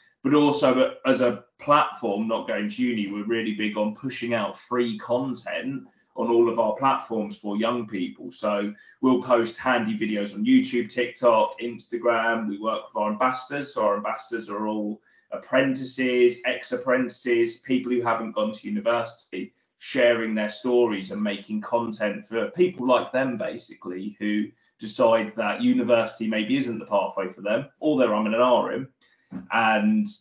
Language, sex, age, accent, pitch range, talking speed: English, male, 20-39, British, 110-140 Hz, 155 wpm